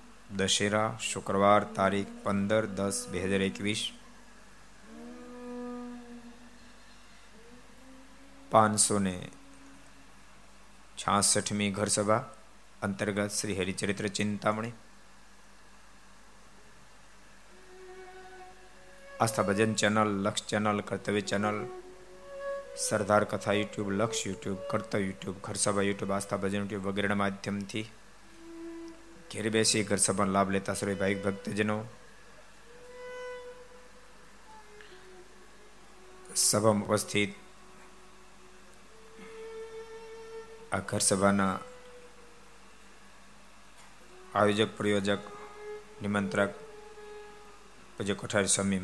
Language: Gujarati